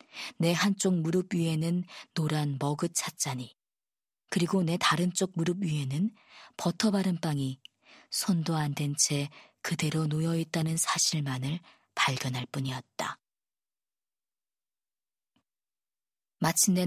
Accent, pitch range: native, 145-185 Hz